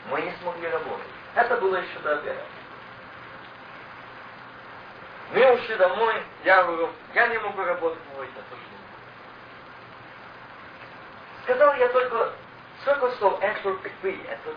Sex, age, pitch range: male, 50-69, 215-315 Hz